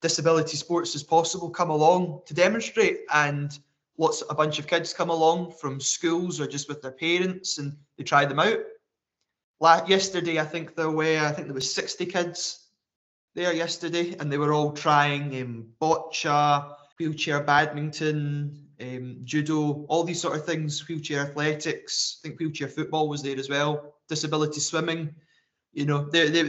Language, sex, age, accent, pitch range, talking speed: English, male, 20-39, British, 145-165 Hz, 170 wpm